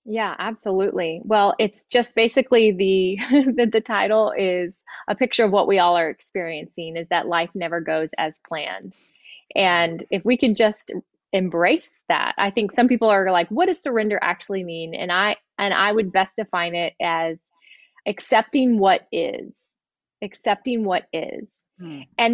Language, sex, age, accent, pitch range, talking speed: English, female, 20-39, American, 185-230 Hz, 160 wpm